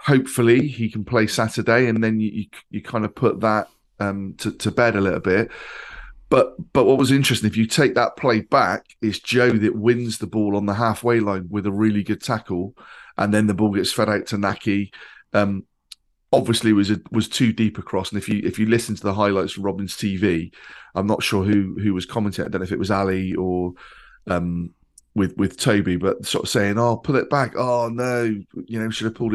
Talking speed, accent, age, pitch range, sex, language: 230 wpm, British, 30-49, 100-115 Hz, male, English